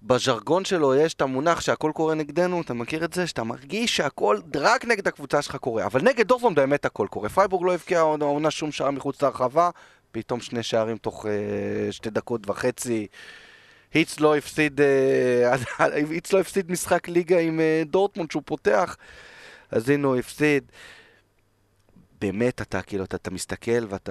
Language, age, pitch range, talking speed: English, 20-39, 120-160 Hz, 160 wpm